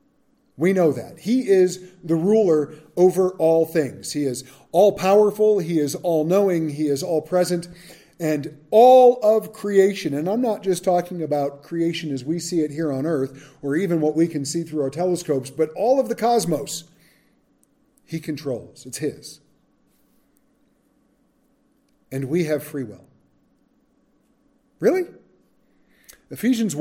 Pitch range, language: 150-215 Hz, English